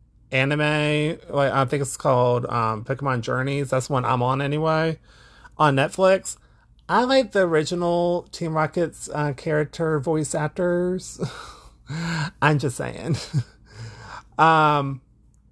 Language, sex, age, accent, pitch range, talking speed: English, male, 30-49, American, 115-160 Hz, 115 wpm